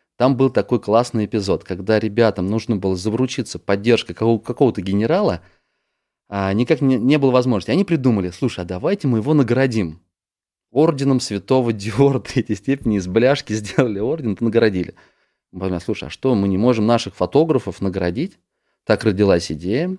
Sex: male